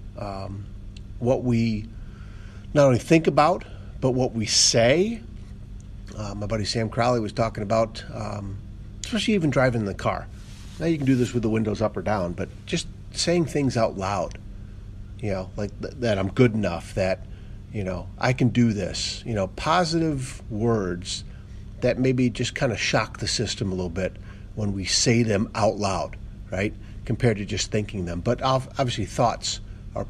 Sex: male